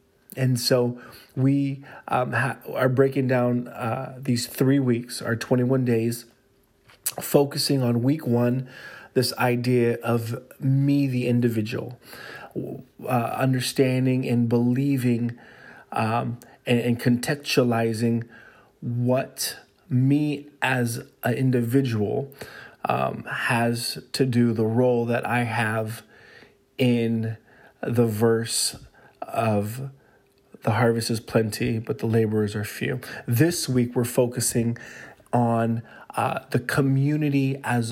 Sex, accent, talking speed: male, American, 110 wpm